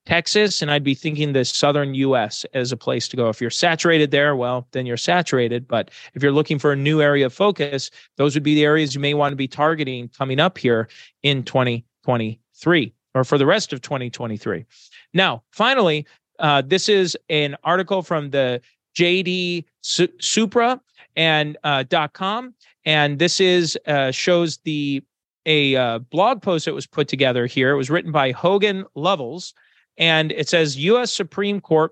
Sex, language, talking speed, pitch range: male, English, 175 wpm, 135-175 Hz